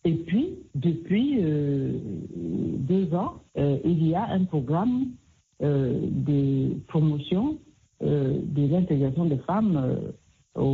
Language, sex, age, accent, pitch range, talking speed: French, female, 60-79, French, 140-185 Hz, 125 wpm